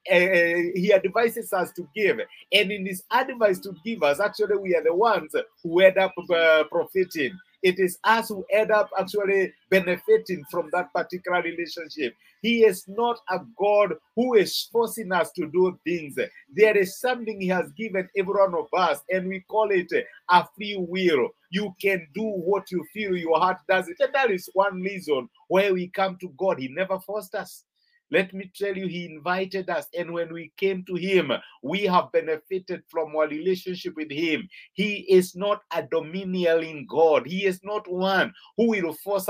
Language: English